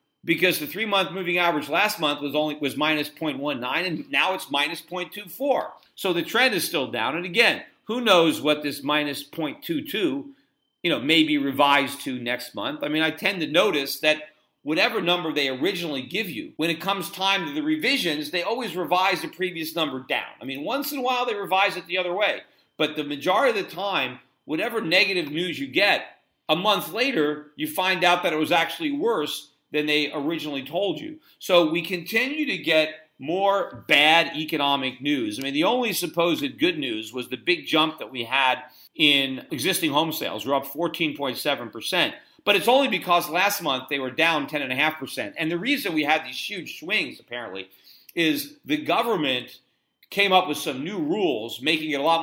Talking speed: 190 wpm